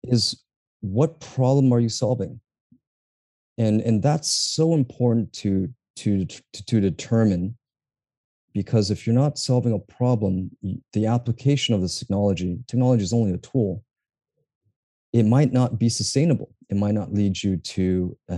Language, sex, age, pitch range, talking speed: English, male, 30-49, 95-125 Hz, 145 wpm